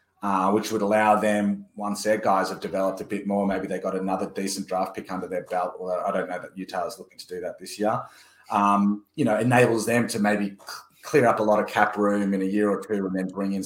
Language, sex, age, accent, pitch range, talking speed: English, male, 30-49, Australian, 95-105 Hz, 260 wpm